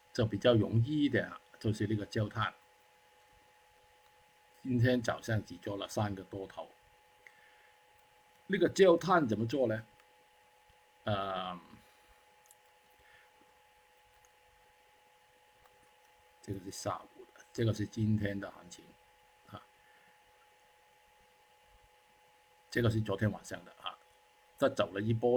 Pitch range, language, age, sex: 105-125 Hz, Chinese, 50-69, male